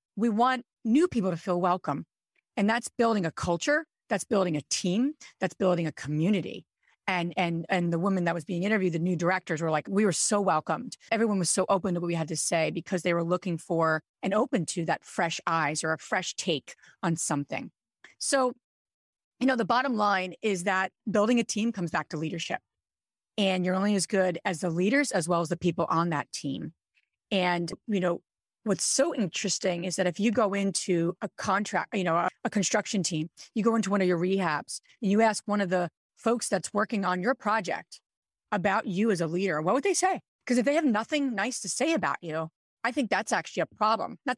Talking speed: 220 wpm